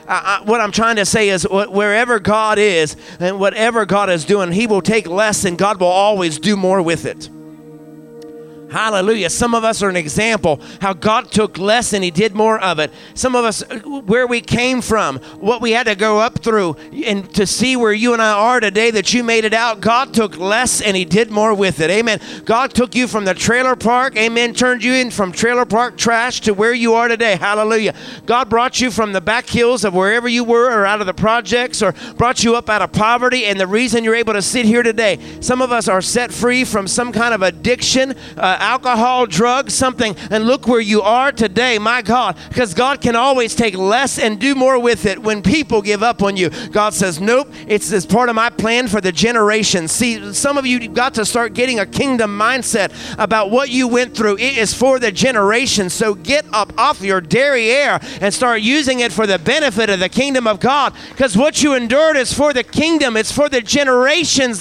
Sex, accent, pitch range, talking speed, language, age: male, American, 200-245 Hz, 220 wpm, English, 50-69